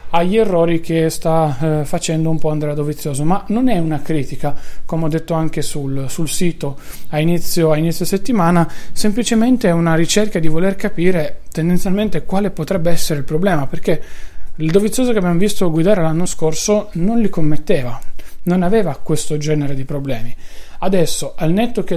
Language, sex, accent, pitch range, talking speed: Italian, male, native, 150-180 Hz, 165 wpm